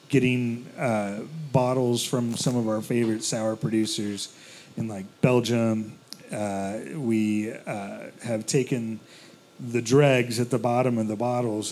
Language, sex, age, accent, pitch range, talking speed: English, male, 40-59, American, 110-140 Hz, 135 wpm